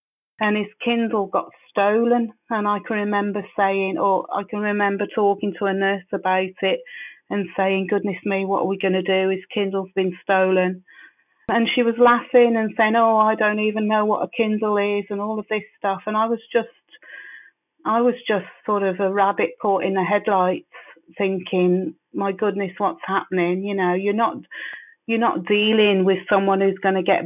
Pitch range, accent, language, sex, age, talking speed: 190-215 Hz, British, English, female, 40-59, 190 wpm